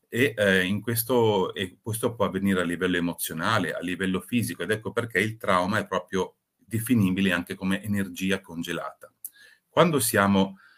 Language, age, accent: Italian, 30-49, native